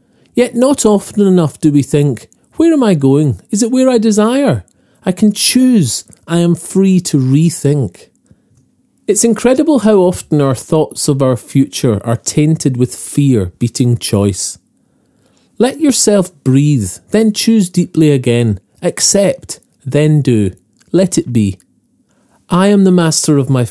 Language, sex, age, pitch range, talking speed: English, male, 40-59, 125-190 Hz, 145 wpm